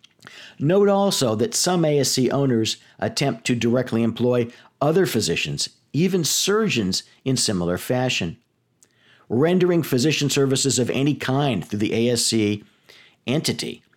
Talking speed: 115 wpm